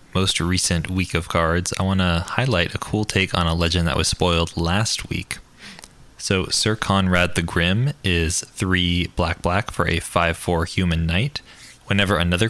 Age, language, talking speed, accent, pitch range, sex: 20-39, English, 175 wpm, American, 85-100 Hz, male